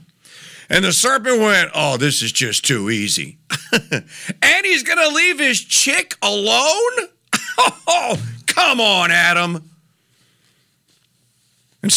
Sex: male